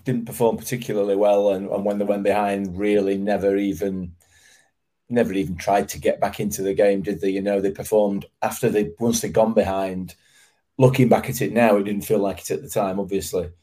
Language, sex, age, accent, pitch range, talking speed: English, male, 30-49, British, 95-110 Hz, 210 wpm